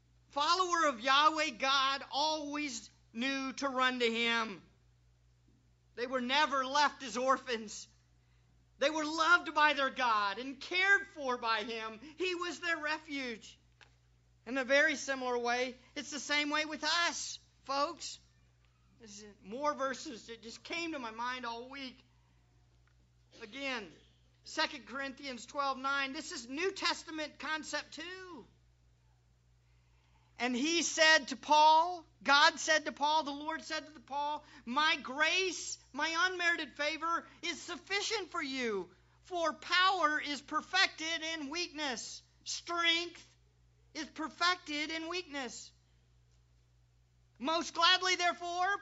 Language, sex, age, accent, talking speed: English, male, 40-59, American, 125 wpm